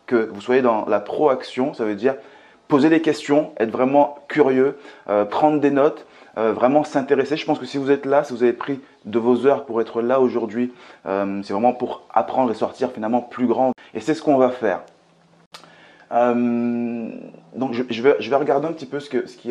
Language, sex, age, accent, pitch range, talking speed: French, male, 30-49, French, 110-135 Hz, 220 wpm